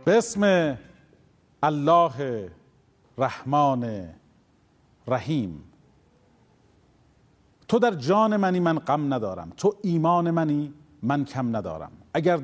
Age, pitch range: 40-59, 110-170 Hz